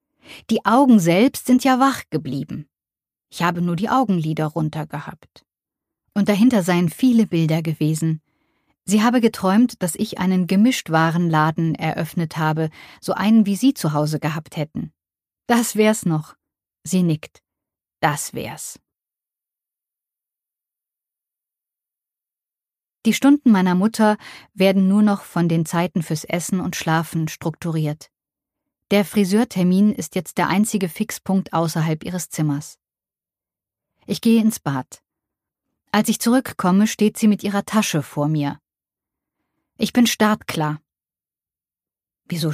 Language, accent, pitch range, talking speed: German, German, 160-220 Hz, 125 wpm